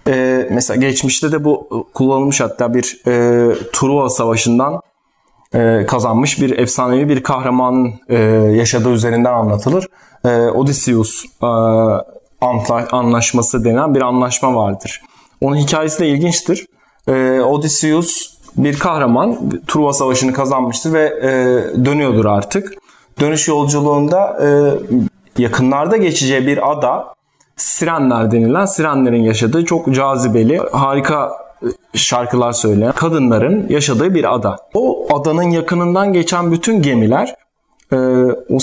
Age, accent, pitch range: 30-49, native, 120-155 Hz